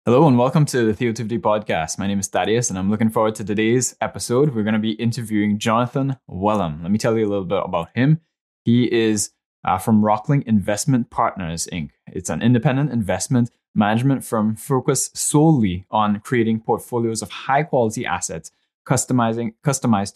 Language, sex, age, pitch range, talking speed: English, male, 10-29, 100-120 Hz, 170 wpm